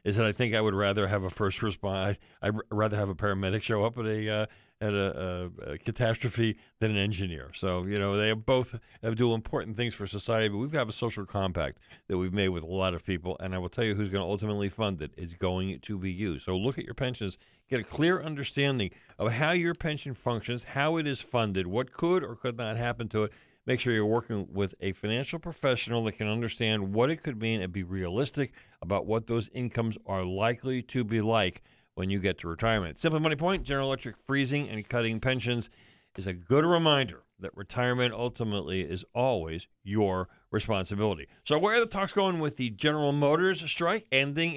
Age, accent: 50-69, American